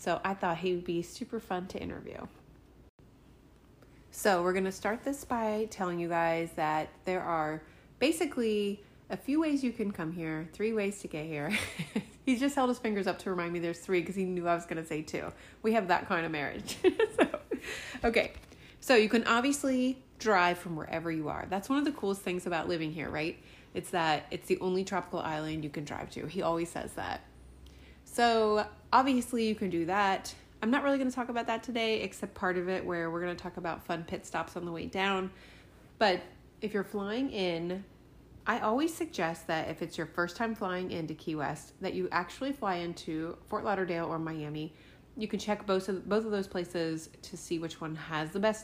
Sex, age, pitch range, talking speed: female, 30-49, 165-215 Hz, 215 wpm